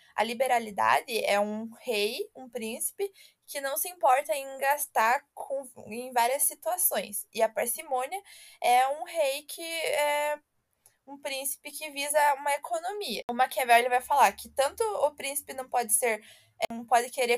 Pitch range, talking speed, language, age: 245-295 Hz, 155 wpm, Portuguese, 20-39